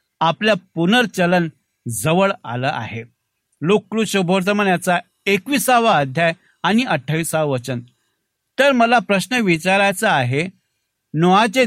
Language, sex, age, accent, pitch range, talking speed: Marathi, male, 60-79, native, 130-200 Hz, 95 wpm